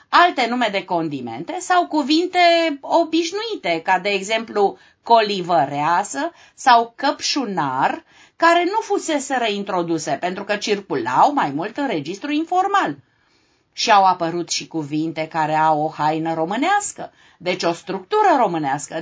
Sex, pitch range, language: female, 175-275 Hz, Romanian